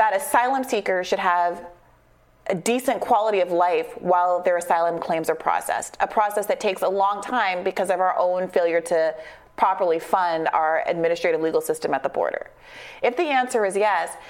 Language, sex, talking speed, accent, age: English, female, 180 wpm, American, 30-49